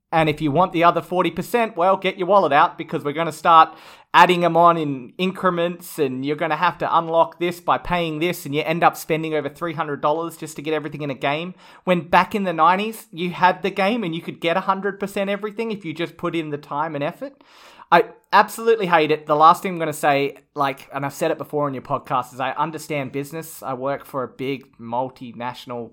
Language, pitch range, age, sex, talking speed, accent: English, 140-170 Hz, 30-49, male, 235 wpm, Australian